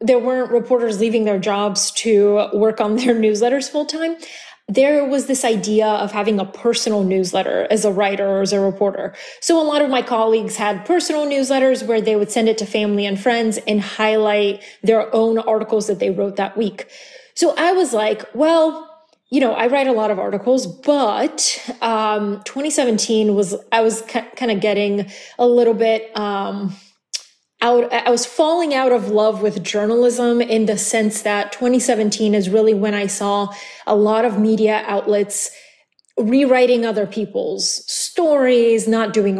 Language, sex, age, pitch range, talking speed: English, female, 20-39, 210-255 Hz, 170 wpm